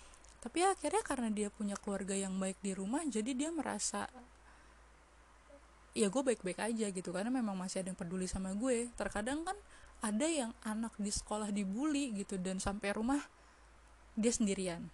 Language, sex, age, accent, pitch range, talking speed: Indonesian, female, 20-39, native, 195-235 Hz, 160 wpm